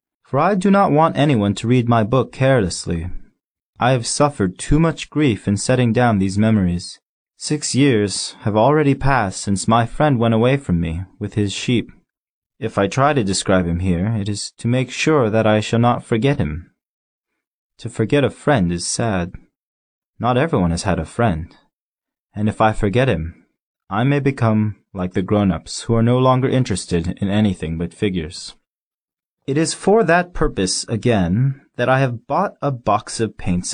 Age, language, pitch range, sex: 20-39, Chinese, 95-130 Hz, male